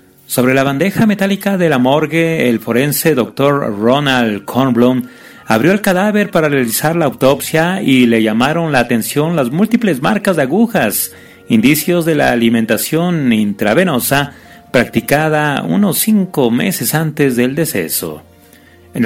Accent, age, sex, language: Mexican, 40-59, male, Spanish